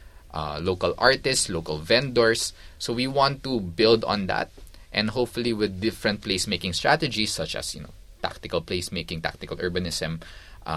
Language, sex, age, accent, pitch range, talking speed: Filipino, male, 20-39, native, 85-110 Hz, 150 wpm